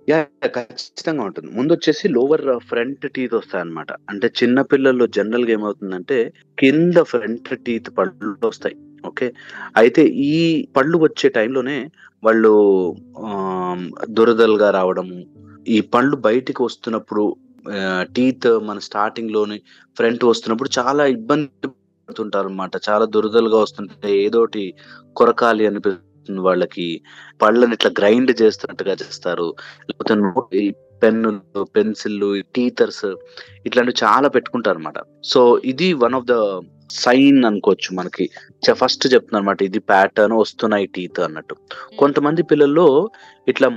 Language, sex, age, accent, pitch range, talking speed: Telugu, male, 20-39, native, 105-145 Hz, 110 wpm